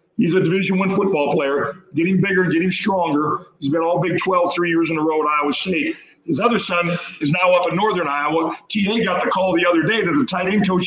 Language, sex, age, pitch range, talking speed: English, male, 50-69, 155-190 Hz, 250 wpm